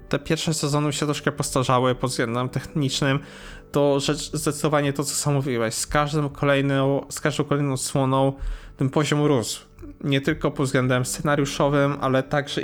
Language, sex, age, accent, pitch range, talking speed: Polish, male, 20-39, native, 135-150 Hz, 155 wpm